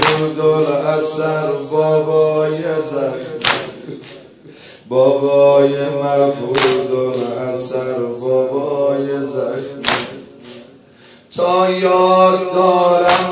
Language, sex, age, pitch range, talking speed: Persian, male, 30-49, 140-175 Hz, 60 wpm